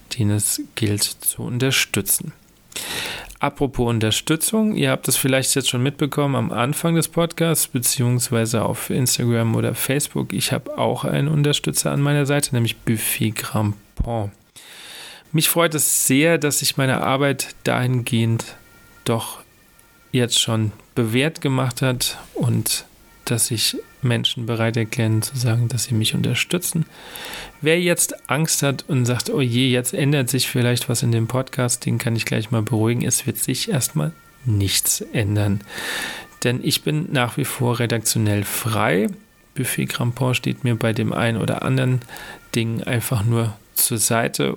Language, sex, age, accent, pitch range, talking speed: German, male, 40-59, German, 115-140 Hz, 150 wpm